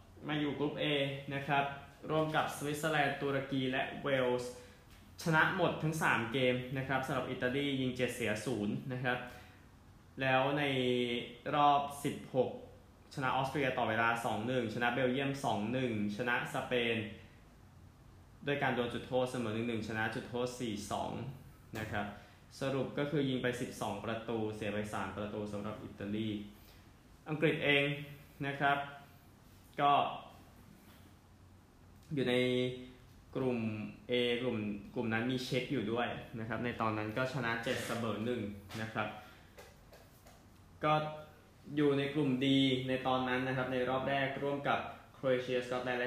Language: Thai